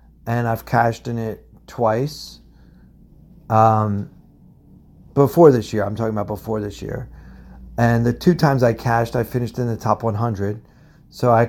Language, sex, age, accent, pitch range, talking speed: English, male, 40-59, American, 105-125 Hz, 155 wpm